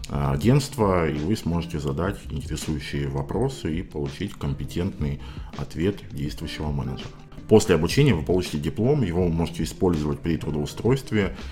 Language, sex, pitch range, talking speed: Russian, male, 75-95 Hz, 120 wpm